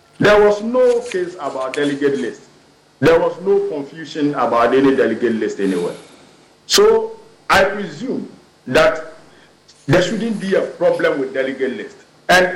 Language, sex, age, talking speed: English, male, 50-69, 140 wpm